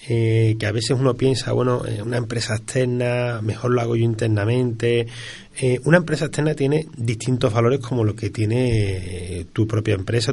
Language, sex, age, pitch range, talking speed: Spanish, male, 30-49, 115-145 Hz, 180 wpm